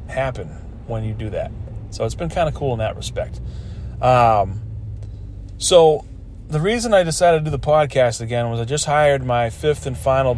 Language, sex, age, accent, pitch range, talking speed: English, male, 30-49, American, 110-135 Hz, 190 wpm